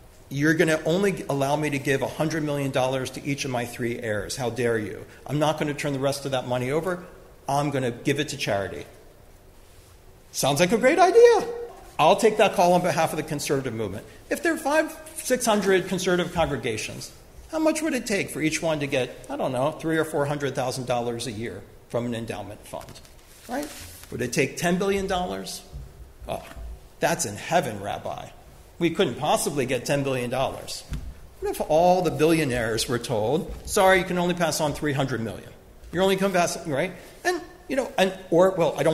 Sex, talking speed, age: male, 195 wpm, 50-69